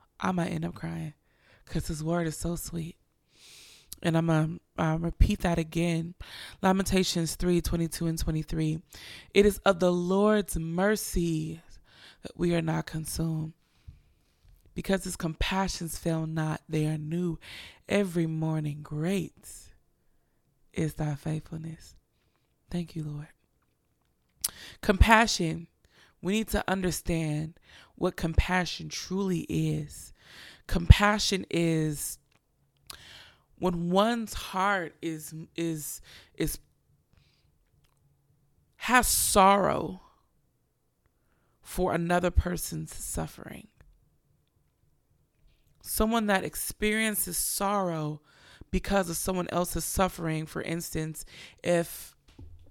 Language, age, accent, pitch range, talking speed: English, 20-39, American, 155-185 Hz, 100 wpm